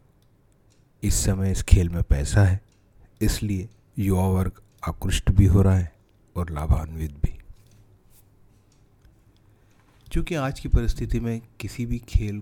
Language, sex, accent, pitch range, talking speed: Hindi, male, native, 90-105 Hz, 120 wpm